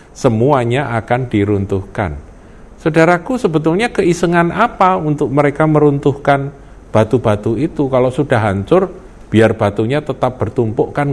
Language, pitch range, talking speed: Indonesian, 85-145 Hz, 110 wpm